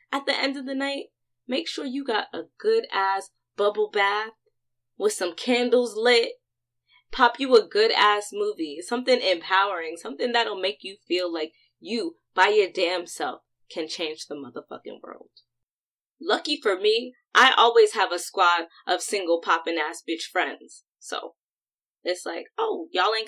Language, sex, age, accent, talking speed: English, female, 20-39, American, 155 wpm